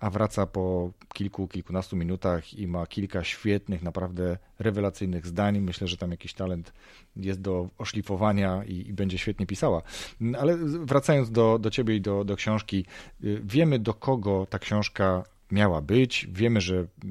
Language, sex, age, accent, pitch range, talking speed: Polish, male, 40-59, native, 90-110 Hz, 155 wpm